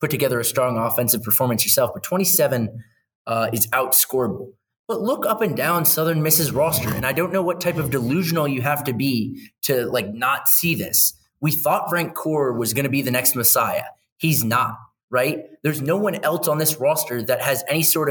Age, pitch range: 20-39, 130-185 Hz